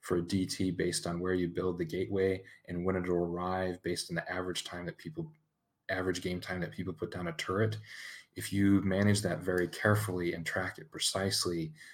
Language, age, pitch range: English, 30-49, 85-110 Hz